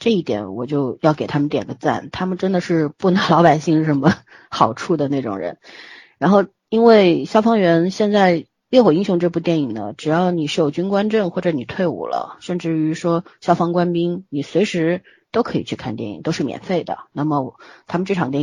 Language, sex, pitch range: Chinese, female, 150-185 Hz